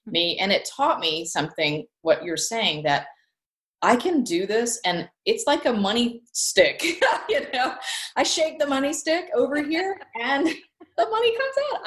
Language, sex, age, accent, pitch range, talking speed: English, female, 30-49, American, 195-300 Hz, 170 wpm